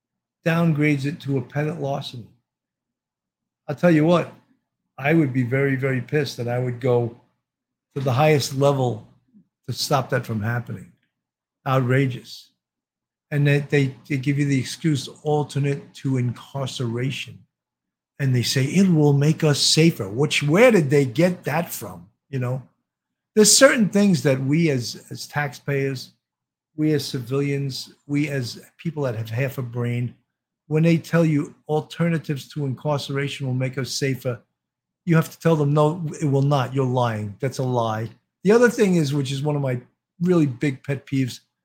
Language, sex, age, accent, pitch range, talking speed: English, male, 50-69, American, 130-165 Hz, 165 wpm